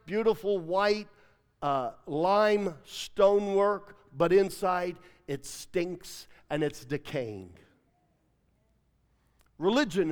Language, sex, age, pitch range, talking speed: English, male, 50-69, 175-240 Hz, 75 wpm